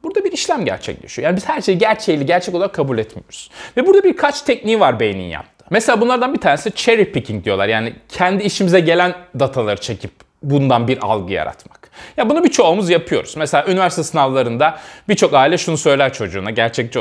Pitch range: 125-210 Hz